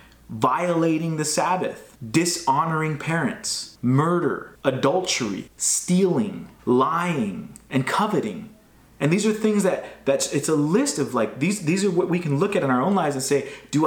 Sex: male